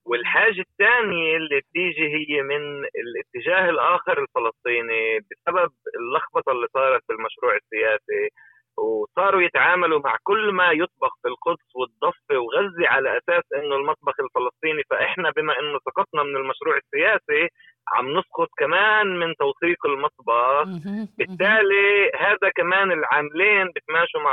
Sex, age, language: male, 30-49, Arabic